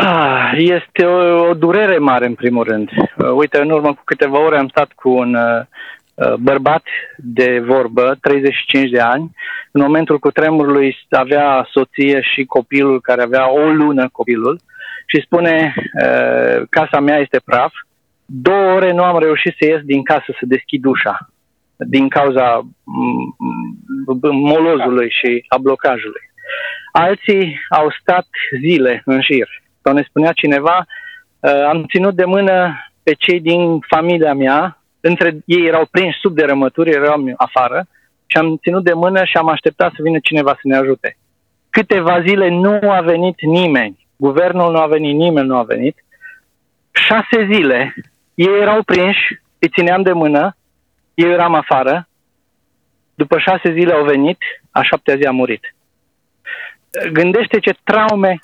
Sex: male